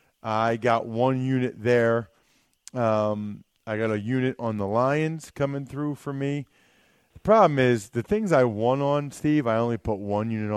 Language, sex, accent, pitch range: English, male, American, 100-125 Hz